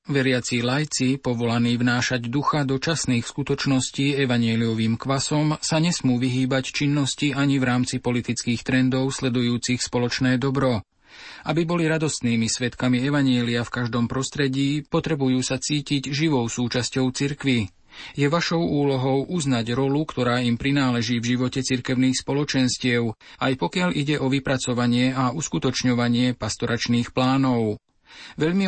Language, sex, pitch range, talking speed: Slovak, male, 125-145 Hz, 120 wpm